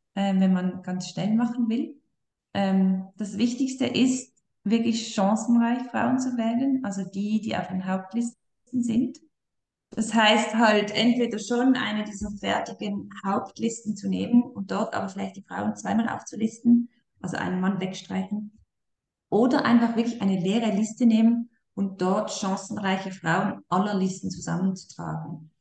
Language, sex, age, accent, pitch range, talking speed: German, female, 20-39, German, 175-220 Hz, 135 wpm